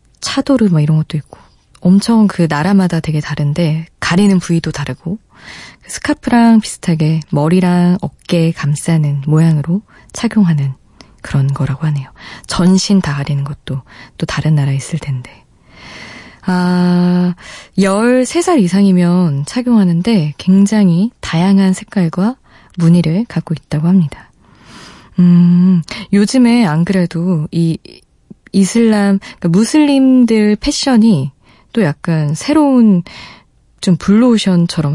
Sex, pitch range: female, 155-200 Hz